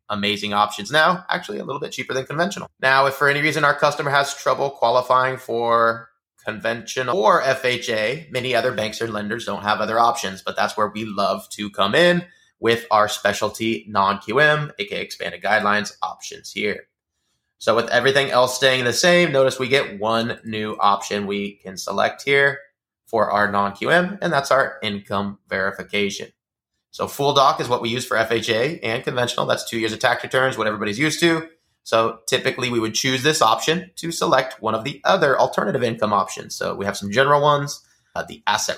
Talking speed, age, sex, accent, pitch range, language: 185 wpm, 20-39, male, American, 110-140 Hz, English